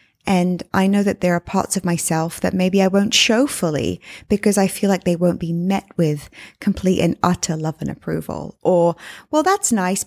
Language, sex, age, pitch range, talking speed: English, female, 20-39, 175-215 Hz, 205 wpm